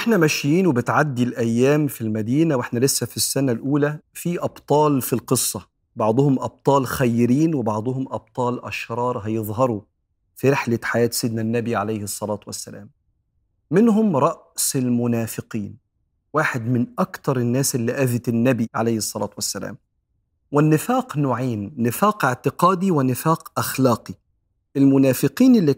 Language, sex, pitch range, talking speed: Arabic, male, 120-160 Hz, 120 wpm